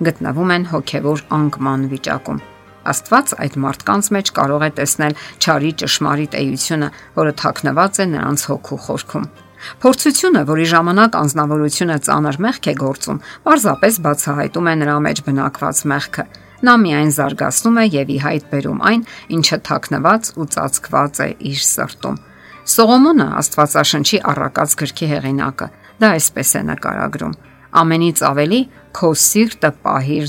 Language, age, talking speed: English, 50-69, 75 wpm